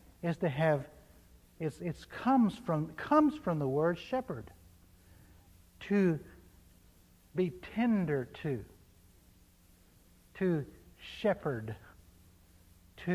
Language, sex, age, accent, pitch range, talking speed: English, male, 60-79, American, 110-175 Hz, 85 wpm